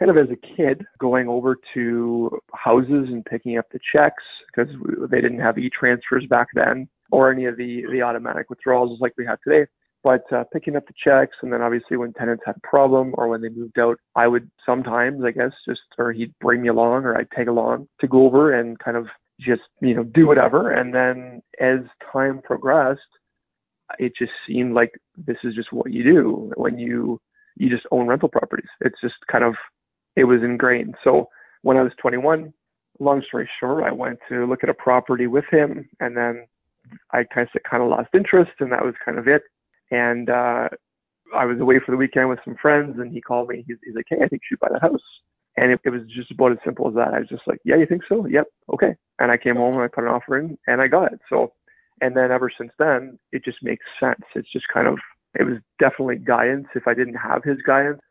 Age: 30-49